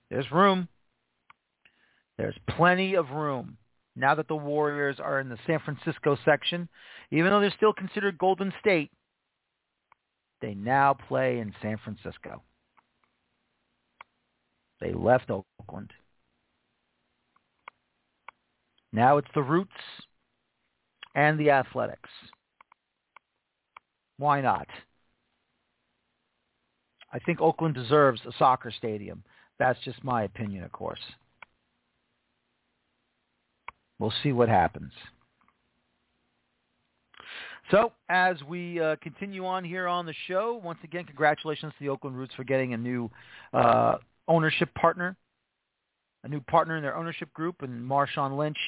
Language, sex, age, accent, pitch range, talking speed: English, male, 50-69, American, 120-165 Hz, 115 wpm